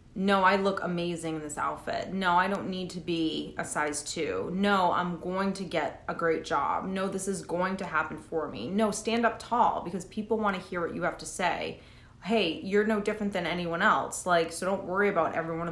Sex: female